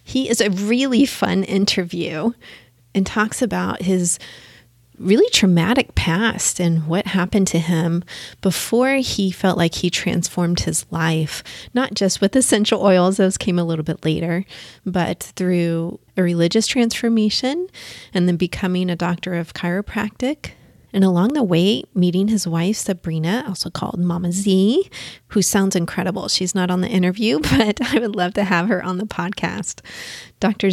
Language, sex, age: English, female, 30-49